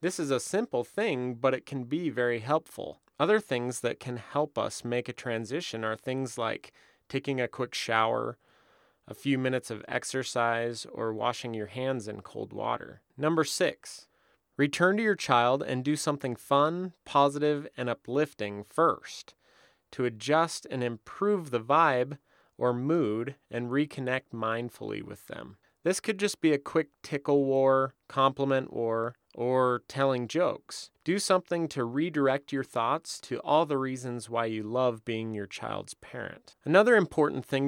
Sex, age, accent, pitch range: male, 30-49, American, 115-140 Hz